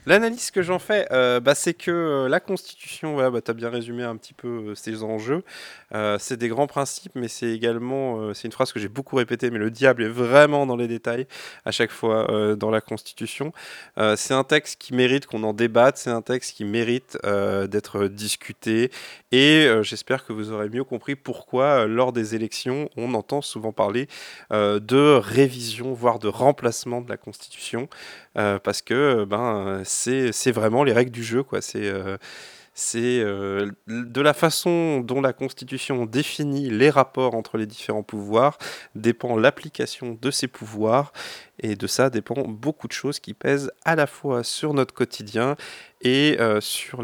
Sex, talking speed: male, 190 wpm